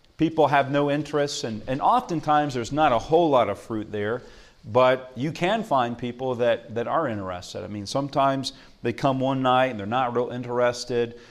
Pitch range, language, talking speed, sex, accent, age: 110-150 Hz, English, 190 wpm, male, American, 40-59